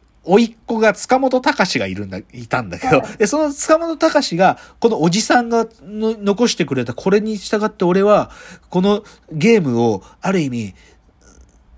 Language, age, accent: Japanese, 40-59, native